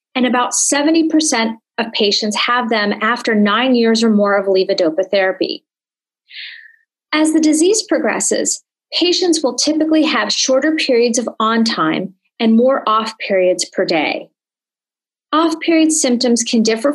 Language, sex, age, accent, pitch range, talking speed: English, female, 30-49, American, 210-285 Hz, 125 wpm